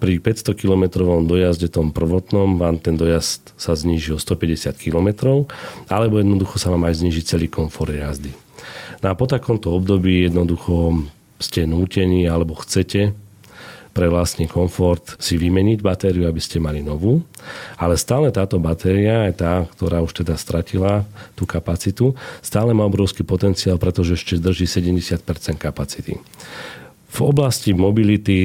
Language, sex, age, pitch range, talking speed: Slovak, male, 40-59, 85-100 Hz, 140 wpm